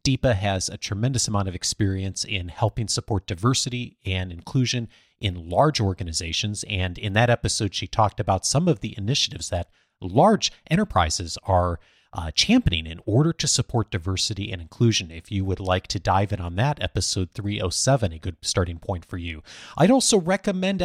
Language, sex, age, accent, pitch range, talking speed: English, male, 30-49, American, 95-125 Hz, 175 wpm